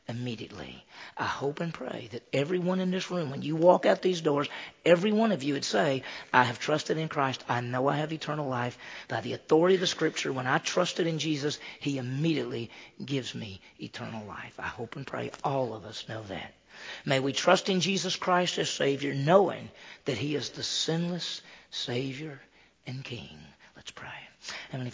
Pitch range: 125-160 Hz